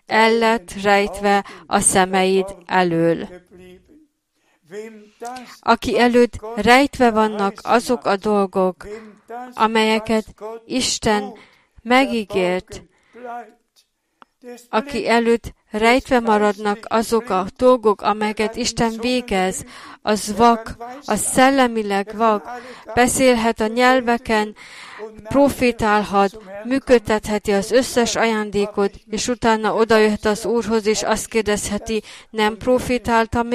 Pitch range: 205-235 Hz